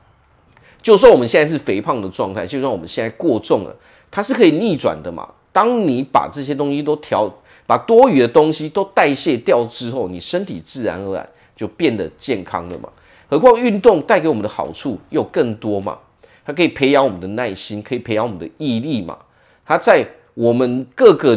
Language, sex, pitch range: Chinese, male, 115-155 Hz